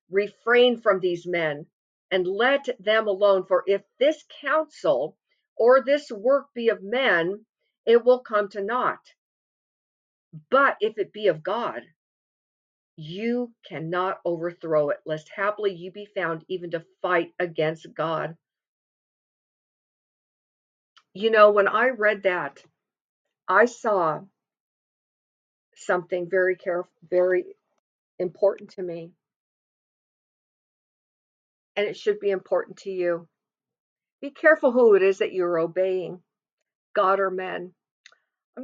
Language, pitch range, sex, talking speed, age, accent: English, 175-215 Hz, female, 120 wpm, 50-69, American